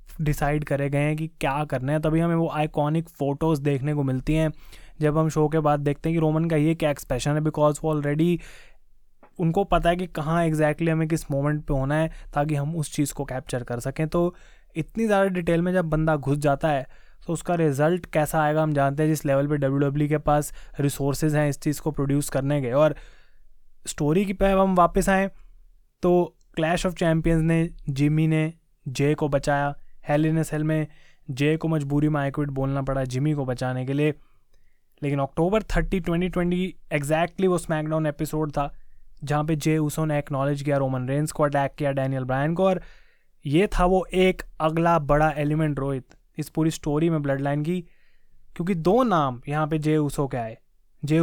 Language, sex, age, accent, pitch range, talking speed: Hindi, male, 20-39, native, 145-165 Hz, 200 wpm